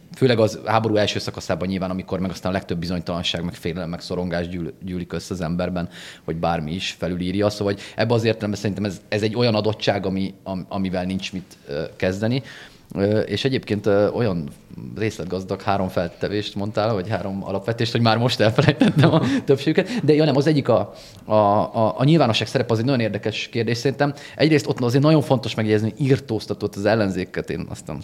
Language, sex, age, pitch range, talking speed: Hungarian, male, 30-49, 95-110 Hz, 190 wpm